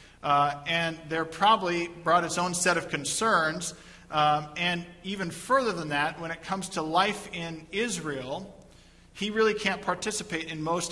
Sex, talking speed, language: male, 160 wpm, English